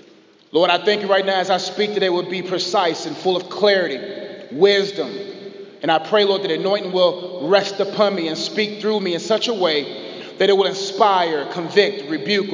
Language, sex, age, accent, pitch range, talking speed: English, male, 30-49, American, 175-210 Hz, 205 wpm